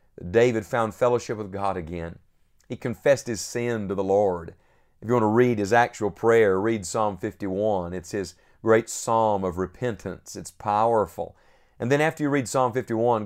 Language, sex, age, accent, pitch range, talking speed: English, male, 40-59, American, 100-125 Hz, 175 wpm